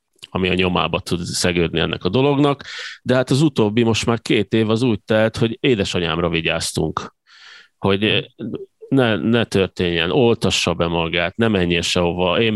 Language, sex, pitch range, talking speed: Hungarian, male, 90-120 Hz, 160 wpm